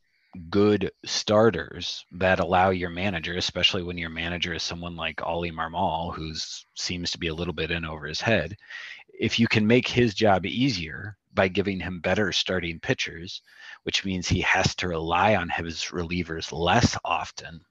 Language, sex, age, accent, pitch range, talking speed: English, male, 30-49, American, 85-105 Hz, 170 wpm